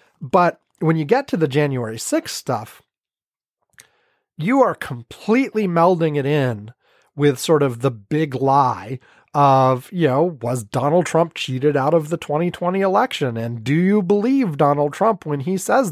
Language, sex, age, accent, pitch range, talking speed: English, male, 30-49, American, 145-220 Hz, 160 wpm